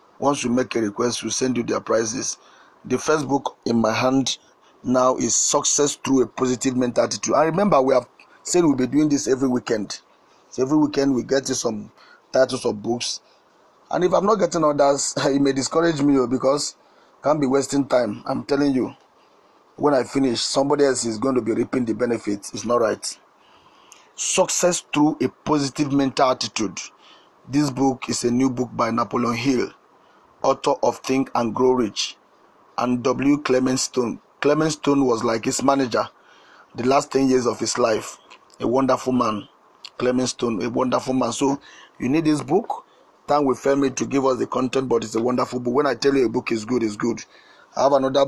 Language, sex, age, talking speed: English, male, 40-59, 195 wpm